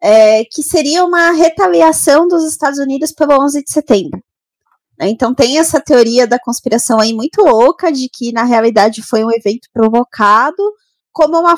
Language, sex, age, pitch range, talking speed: Portuguese, female, 20-39, 230-310 Hz, 155 wpm